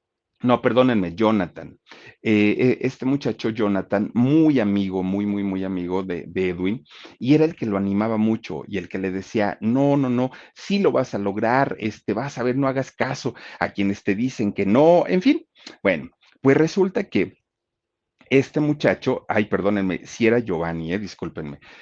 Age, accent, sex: 40-59, Mexican, male